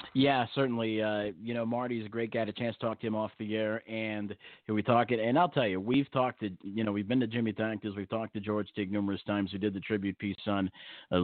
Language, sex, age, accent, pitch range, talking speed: English, male, 40-59, American, 95-110 Hz, 290 wpm